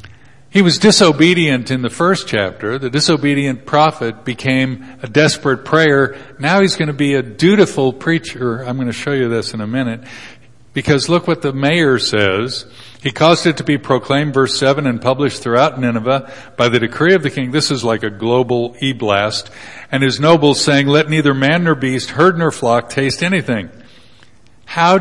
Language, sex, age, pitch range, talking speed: English, male, 50-69, 120-145 Hz, 180 wpm